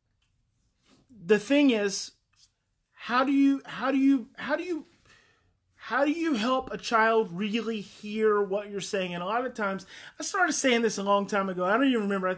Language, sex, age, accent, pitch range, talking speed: English, male, 30-49, American, 175-220 Hz, 200 wpm